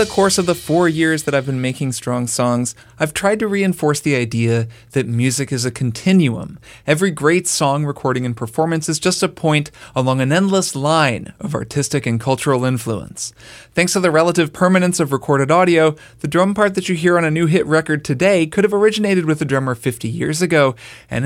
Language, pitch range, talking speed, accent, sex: English, 125-165 Hz, 205 wpm, American, male